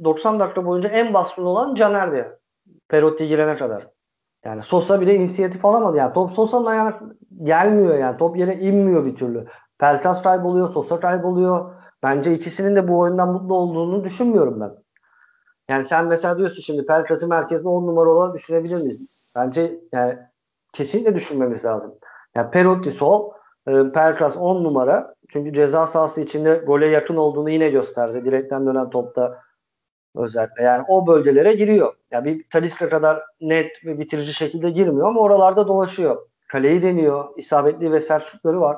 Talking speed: 155 wpm